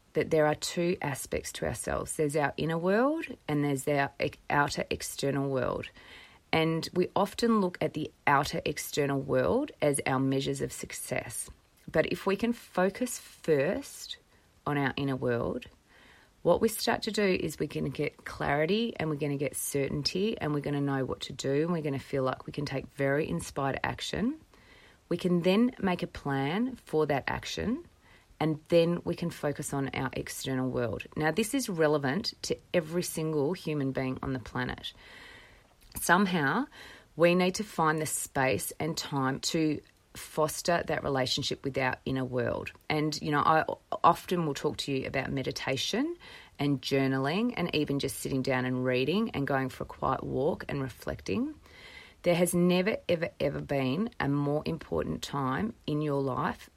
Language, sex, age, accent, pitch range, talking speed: English, female, 30-49, Australian, 135-180 Hz, 175 wpm